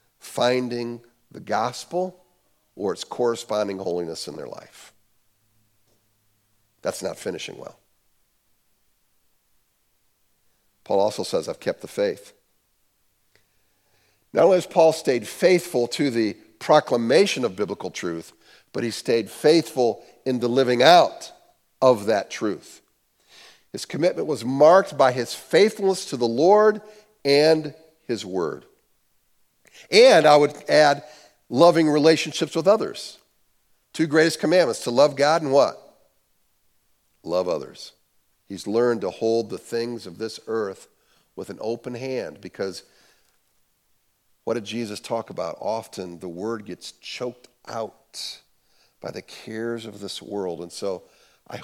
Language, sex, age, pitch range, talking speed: English, male, 50-69, 110-160 Hz, 125 wpm